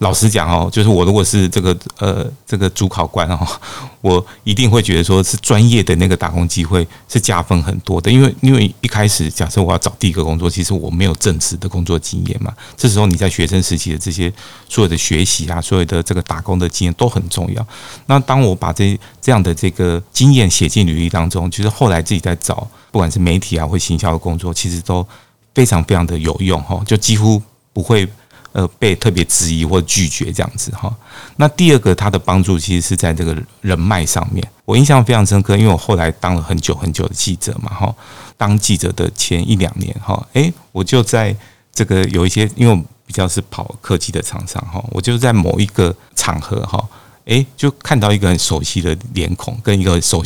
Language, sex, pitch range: Chinese, male, 90-110 Hz